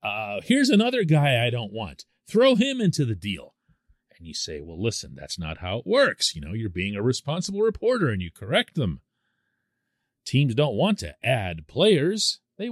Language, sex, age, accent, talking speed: English, male, 40-59, American, 190 wpm